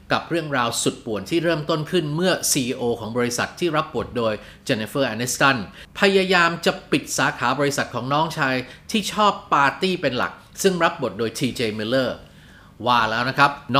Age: 30-49